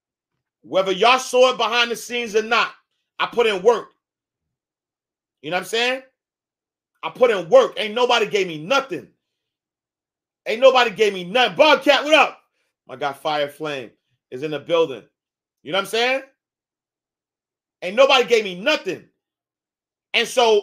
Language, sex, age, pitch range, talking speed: English, male, 30-49, 200-275 Hz, 160 wpm